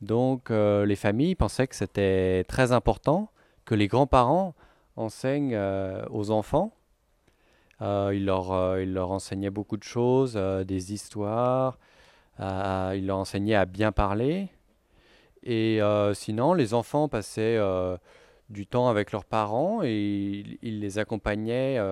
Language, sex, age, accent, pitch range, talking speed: French, male, 30-49, French, 95-115 Hz, 145 wpm